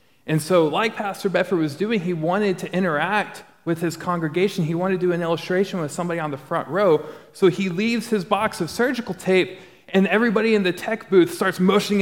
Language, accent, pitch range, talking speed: English, American, 150-205 Hz, 210 wpm